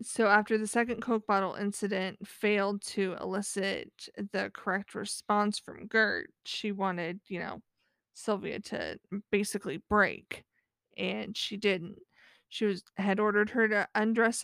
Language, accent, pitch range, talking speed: English, American, 195-220 Hz, 135 wpm